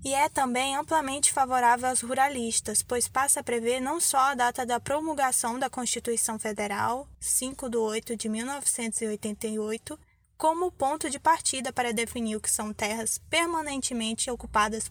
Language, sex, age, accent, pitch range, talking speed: Portuguese, female, 10-29, Brazilian, 235-270 Hz, 150 wpm